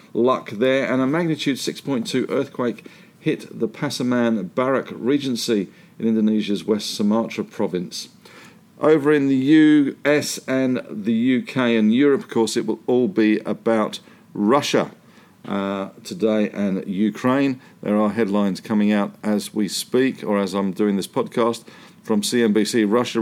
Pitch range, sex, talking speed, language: 105-140 Hz, male, 140 wpm, English